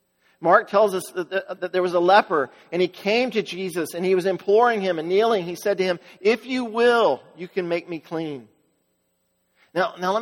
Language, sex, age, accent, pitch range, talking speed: English, male, 50-69, American, 160-205 Hz, 205 wpm